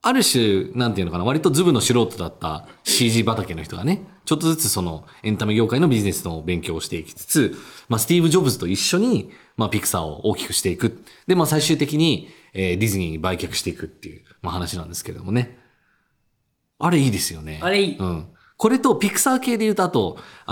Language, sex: Japanese, male